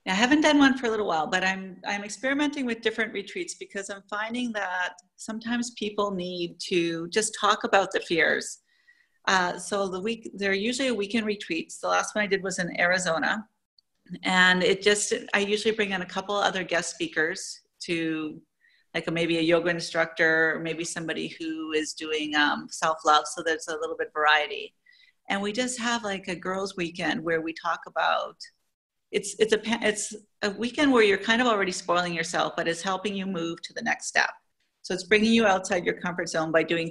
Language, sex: English, female